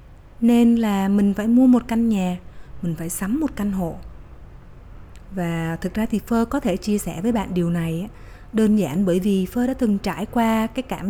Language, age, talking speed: Vietnamese, 20-39, 205 wpm